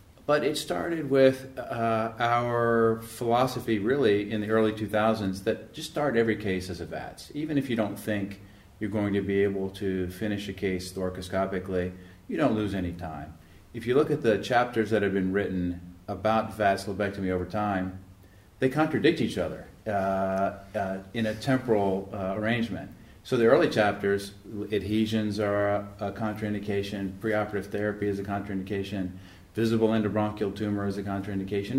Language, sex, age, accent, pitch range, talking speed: English, male, 40-59, American, 95-110 Hz, 160 wpm